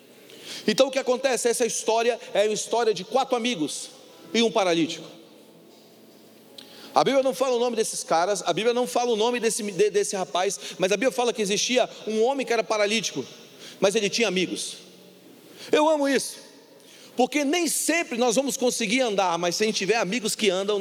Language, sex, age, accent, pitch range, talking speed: Portuguese, male, 40-59, Brazilian, 210-260 Hz, 185 wpm